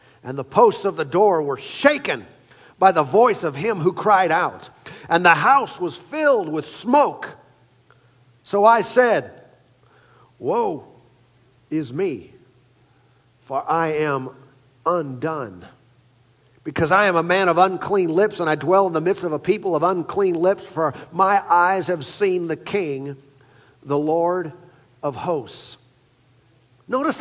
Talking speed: 145 wpm